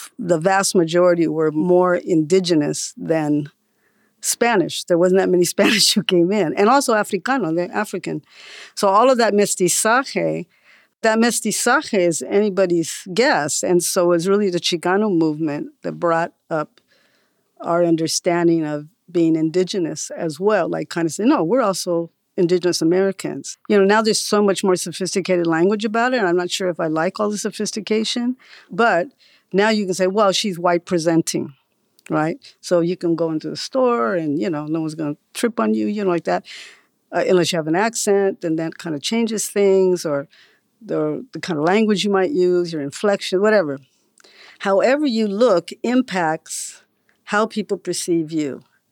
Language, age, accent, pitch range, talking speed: English, 50-69, American, 170-215 Hz, 175 wpm